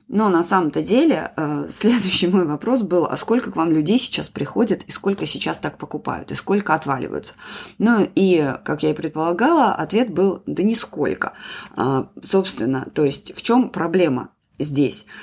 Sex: female